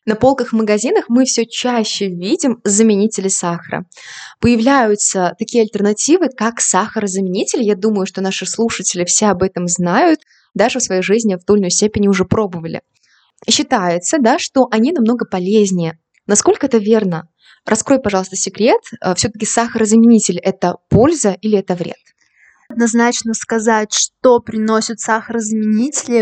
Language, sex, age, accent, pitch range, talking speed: Russian, female, 20-39, native, 205-240 Hz, 130 wpm